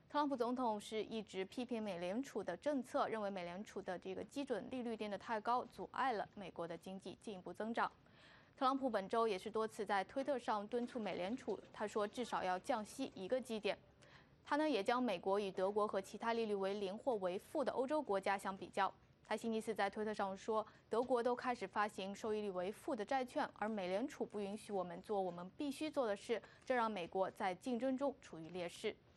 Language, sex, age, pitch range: English, female, 20-39, 195-245 Hz